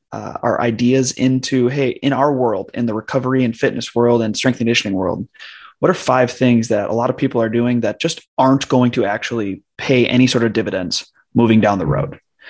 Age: 20-39